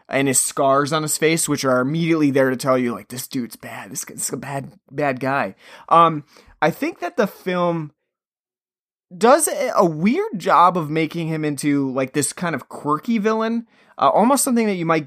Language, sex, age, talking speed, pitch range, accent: English, male, 20-39, 195 wpm, 140-210 Hz, American